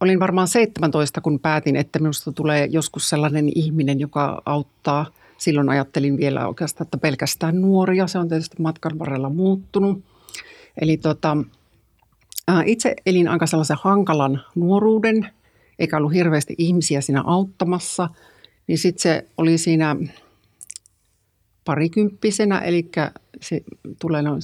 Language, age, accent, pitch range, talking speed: Finnish, 50-69, native, 145-170 Hz, 120 wpm